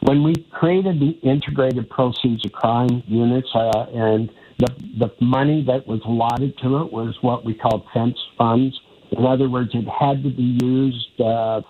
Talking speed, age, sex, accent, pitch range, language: 175 wpm, 60-79, male, American, 115-135 Hz, English